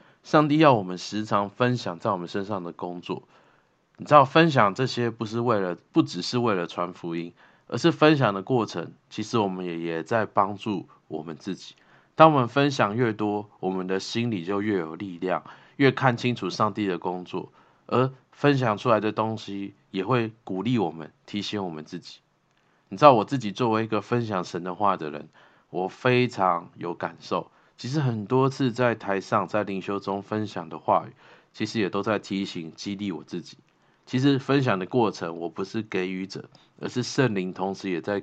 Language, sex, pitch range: Chinese, male, 95-125 Hz